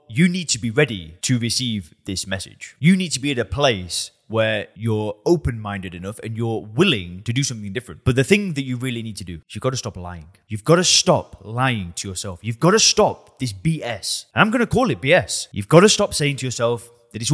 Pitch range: 105-150 Hz